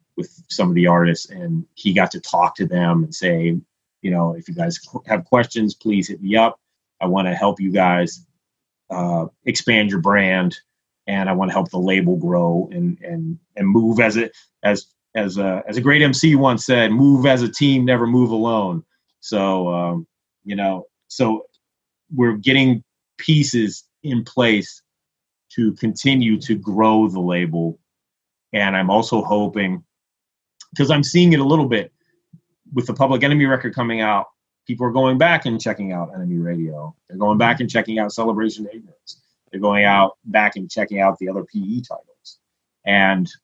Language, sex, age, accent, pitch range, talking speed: English, male, 30-49, American, 95-135 Hz, 175 wpm